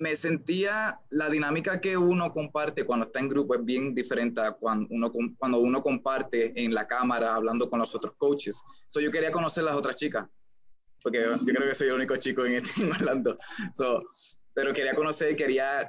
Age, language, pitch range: 20-39, Spanish, 125-155 Hz